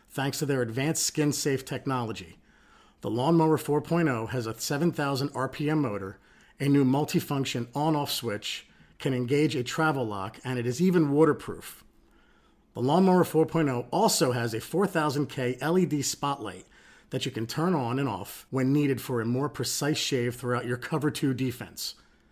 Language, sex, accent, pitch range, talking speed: English, male, American, 120-155 Hz, 150 wpm